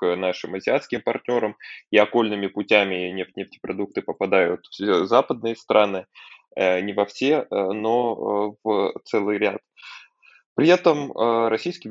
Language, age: Russian, 20-39